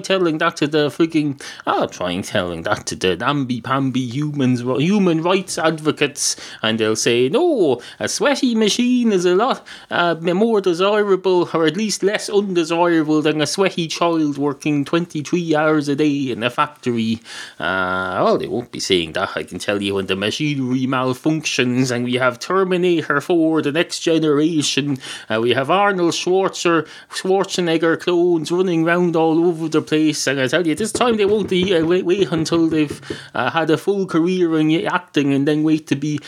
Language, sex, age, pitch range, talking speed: English, male, 30-49, 145-185 Hz, 185 wpm